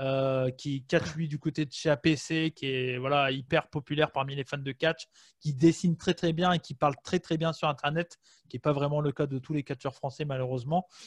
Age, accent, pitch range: 20-39, French, 135-165 Hz